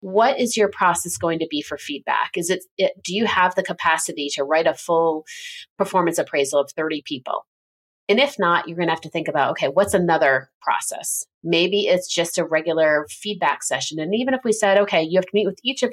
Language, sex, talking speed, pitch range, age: English, female, 225 wpm, 150-195 Hz, 30-49